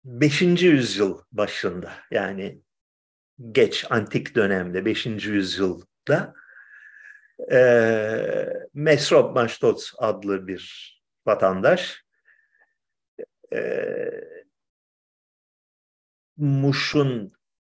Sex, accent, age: male, native, 50-69